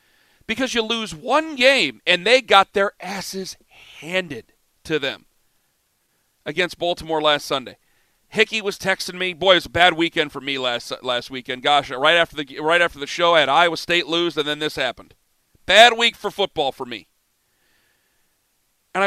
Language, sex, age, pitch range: English, male, 40-59, 170-215 Hz